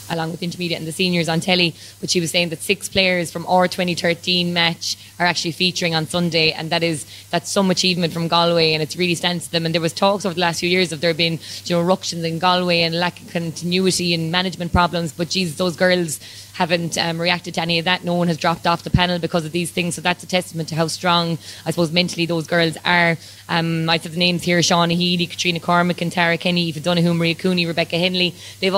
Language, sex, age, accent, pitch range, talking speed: English, female, 20-39, Irish, 165-175 Hz, 245 wpm